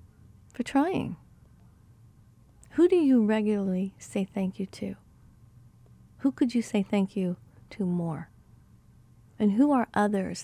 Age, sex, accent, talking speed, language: 40-59, female, American, 125 wpm, English